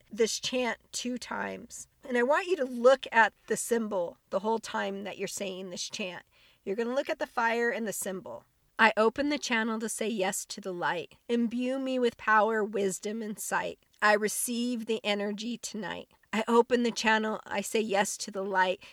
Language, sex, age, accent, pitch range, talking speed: English, female, 40-59, American, 205-250 Hz, 200 wpm